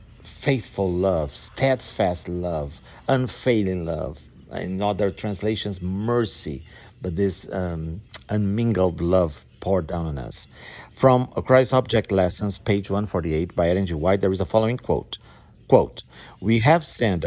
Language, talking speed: English, 130 wpm